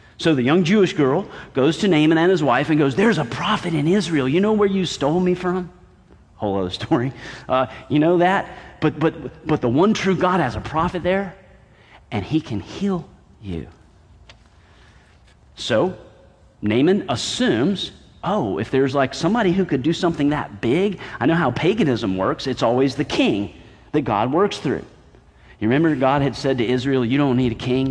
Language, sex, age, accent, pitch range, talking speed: English, male, 40-59, American, 125-175 Hz, 185 wpm